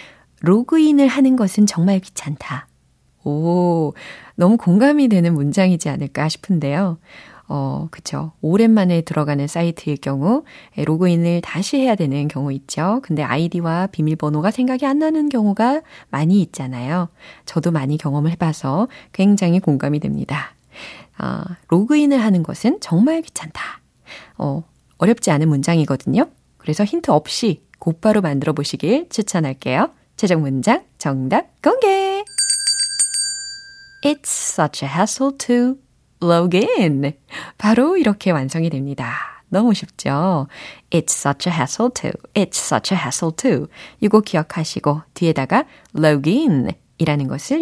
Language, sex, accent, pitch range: Korean, female, native, 150-220 Hz